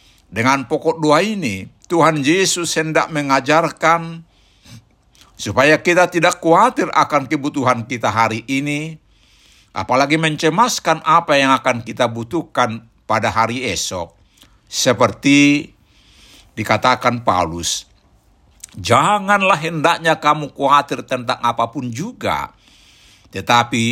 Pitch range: 110-150 Hz